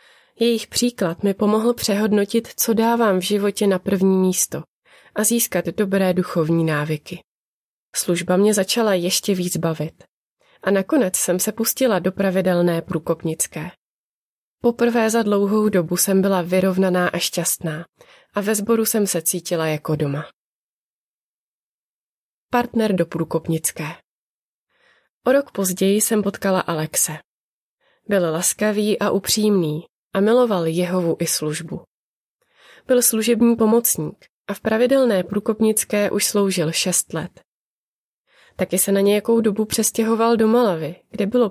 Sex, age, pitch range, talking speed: female, 20-39, 175-220 Hz, 125 wpm